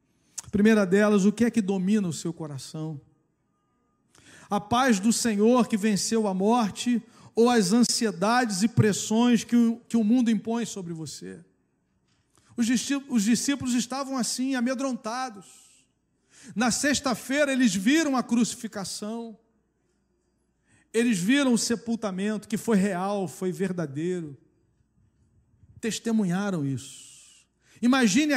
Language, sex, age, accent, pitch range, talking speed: Portuguese, male, 40-59, Brazilian, 200-255 Hz, 110 wpm